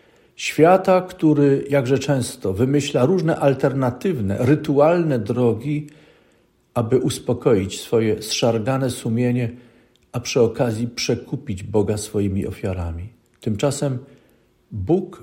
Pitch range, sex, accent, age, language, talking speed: 110-145 Hz, male, native, 50-69, Polish, 90 wpm